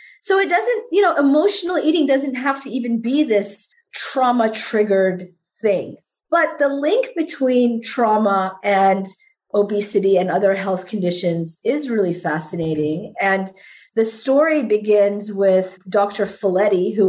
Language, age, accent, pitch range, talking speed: English, 40-59, American, 190-240 Hz, 135 wpm